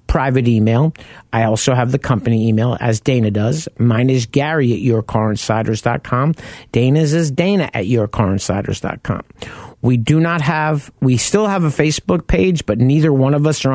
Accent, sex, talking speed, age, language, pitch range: American, male, 180 wpm, 50-69, English, 110-140 Hz